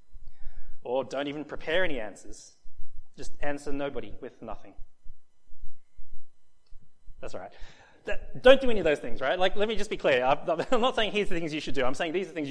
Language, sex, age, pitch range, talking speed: English, male, 30-49, 140-195 Hz, 205 wpm